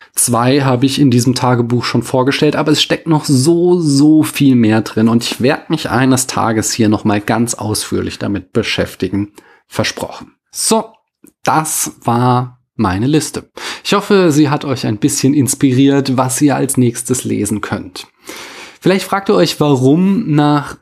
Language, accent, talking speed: German, German, 160 wpm